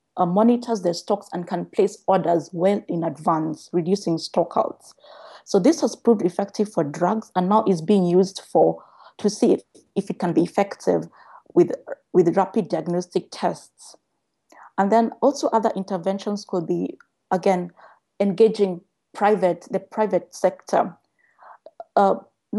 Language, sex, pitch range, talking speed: English, female, 180-225 Hz, 140 wpm